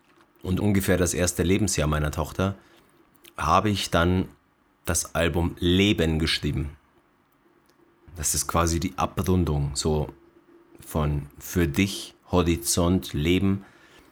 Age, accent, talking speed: 30-49, German, 105 wpm